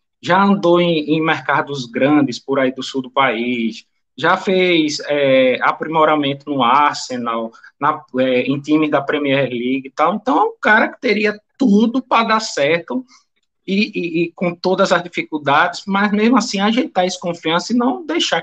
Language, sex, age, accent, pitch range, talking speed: Portuguese, male, 20-39, Brazilian, 150-240 Hz, 175 wpm